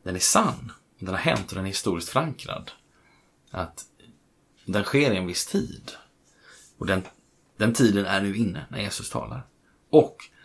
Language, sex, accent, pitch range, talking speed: Swedish, male, native, 95-115 Hz, 165 wpm